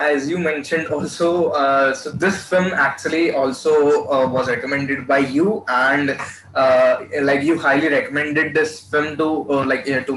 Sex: male